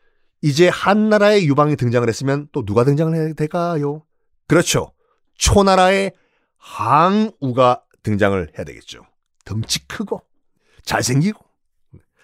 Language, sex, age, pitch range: Korean, male, 40-59, 135-195 Hz